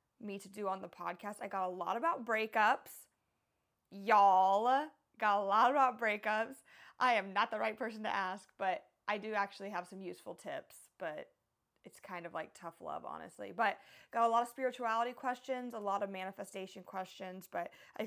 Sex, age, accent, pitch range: female, 20-39, American, 185-220 Hz